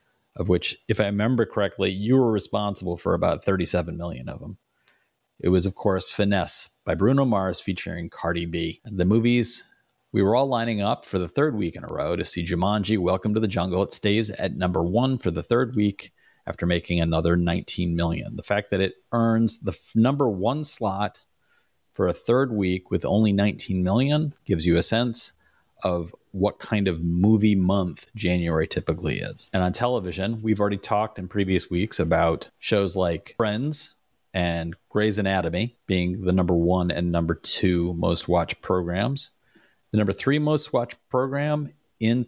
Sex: male